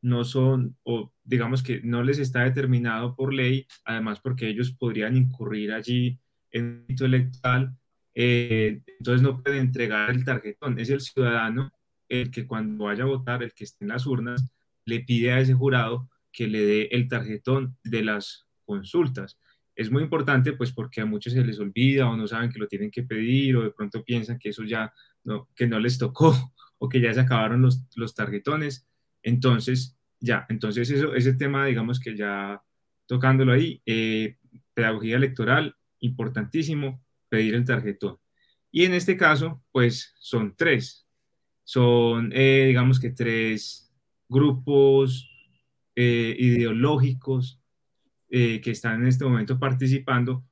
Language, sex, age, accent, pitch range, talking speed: Spanish, male, 20-39, Colombian, 115-130 Hz, 155 wpm